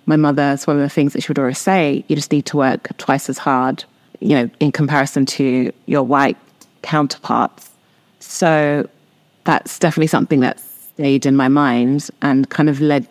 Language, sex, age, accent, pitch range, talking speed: English, female, 30-49, British, 135-155 Hz, 190 wpm